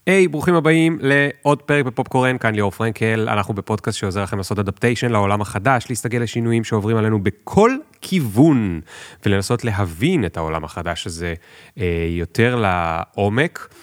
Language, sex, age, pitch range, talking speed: Hebrew, male, 30-49, 95-130 Hz, 80 wpm